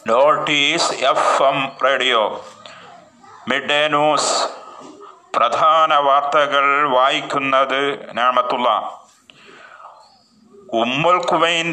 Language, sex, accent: Malayalam, male, native